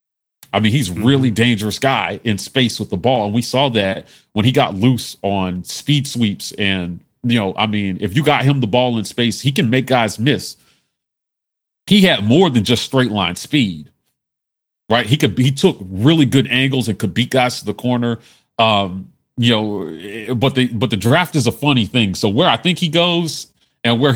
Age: 40-59